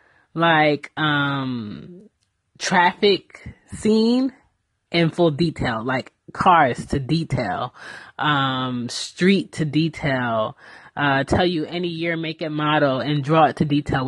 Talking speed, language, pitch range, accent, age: 120 wpm, English, 140-175 Hz, American, 20-39